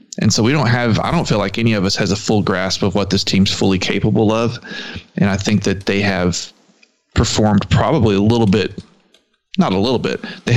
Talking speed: 220 wpm